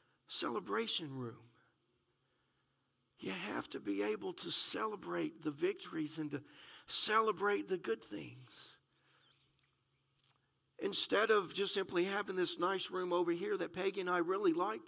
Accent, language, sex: American, English, male